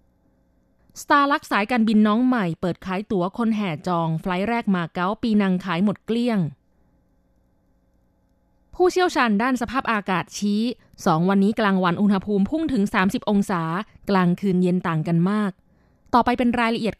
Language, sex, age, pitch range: Thai, female, 20-39, 175-230 Hz